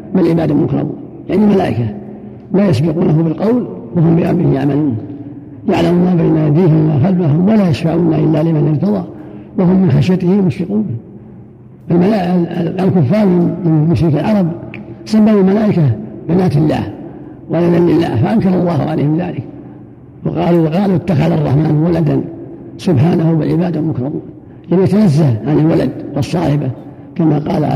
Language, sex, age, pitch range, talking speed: Arabic, male, 60-79, 145-180 Hz, 120 wpm